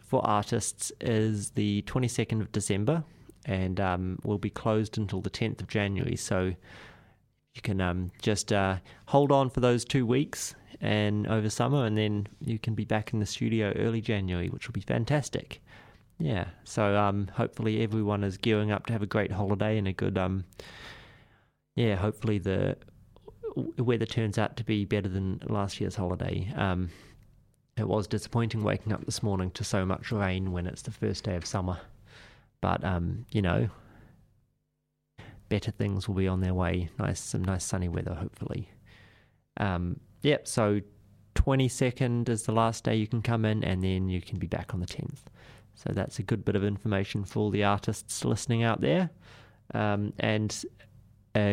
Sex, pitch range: male, 100-115 Hz